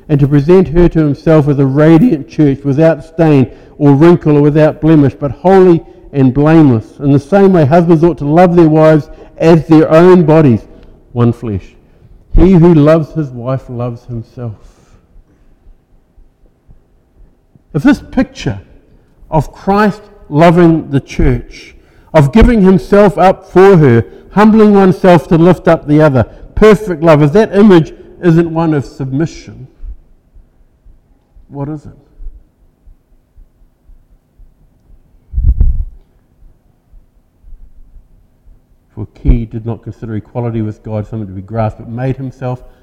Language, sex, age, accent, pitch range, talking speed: English, male, 50-69, Australian, 125-175 Hz, 130 wpm